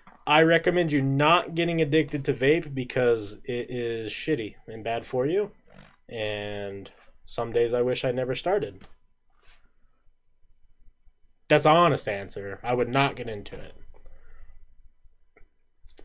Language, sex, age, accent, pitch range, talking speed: English, male, 20-39, American, 115-170 Hz, 130 wpm